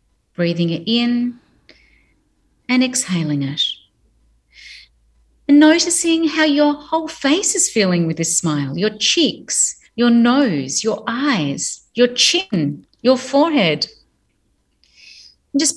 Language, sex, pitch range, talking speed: English, female, 195-290 Hz, 105 wpm